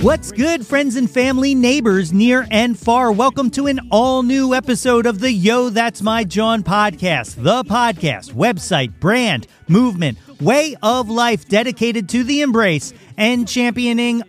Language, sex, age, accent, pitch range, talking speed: English, male, 40-59, American, 180-235 Hz, 145 wpm